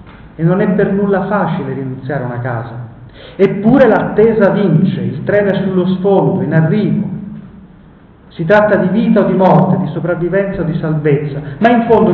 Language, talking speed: Italian, 170 wpm